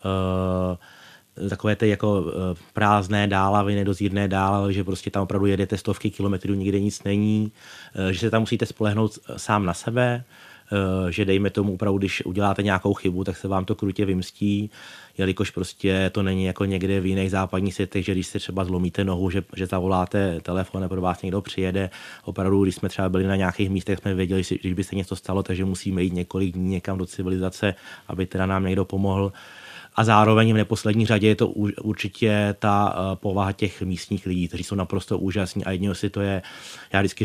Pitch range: 95-105 Hz